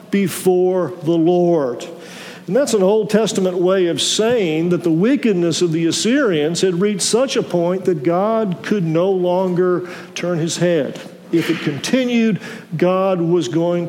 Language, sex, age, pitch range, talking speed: English, male, 50-69, 170-210 Hz, 155 wpm